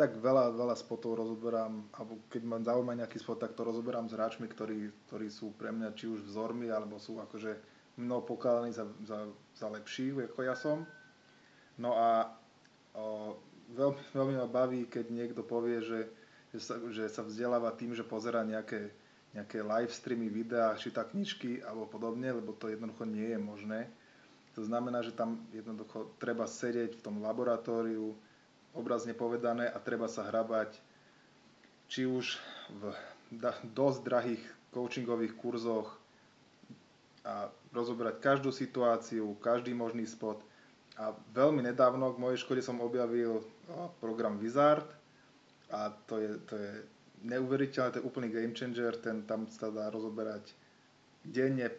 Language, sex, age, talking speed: Czech, male, 20-39, 145 wpm